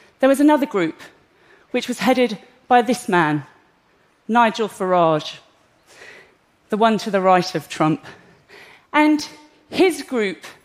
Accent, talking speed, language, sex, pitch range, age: British, 125 wpm, Russian, female, 195-310 Hz, 40-59